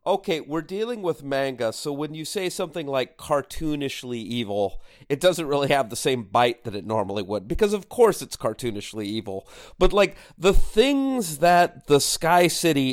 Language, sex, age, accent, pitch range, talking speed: English, male, 40-59, American, 130-180 Hz, 175 wpm